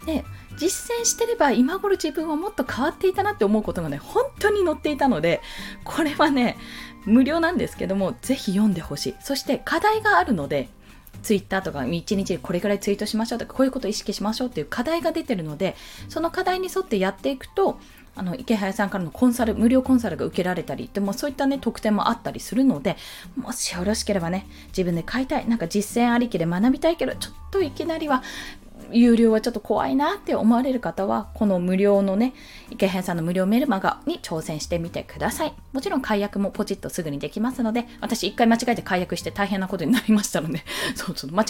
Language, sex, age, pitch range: Japanese, female, 20-39, 195-280 Hz